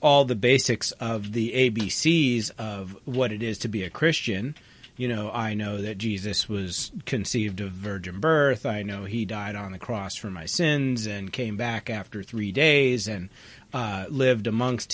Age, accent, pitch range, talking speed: 40-59, American, 110-135 Hz, 180 wpm